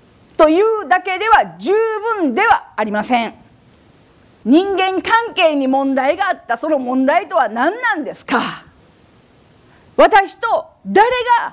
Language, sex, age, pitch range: Japanese, female, 40-59, 270-405 Hz